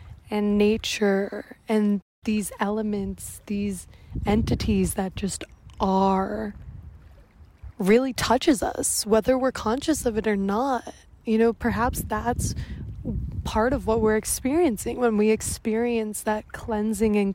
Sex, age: female, 20-39